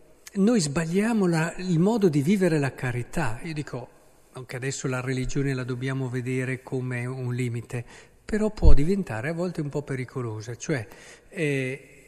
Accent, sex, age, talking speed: native, male, 50-69, 155 wpm